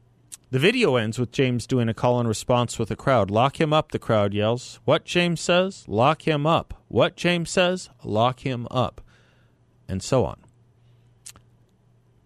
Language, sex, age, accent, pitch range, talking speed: English, male, 40-59, American, 100-125 Hz, 170 wpm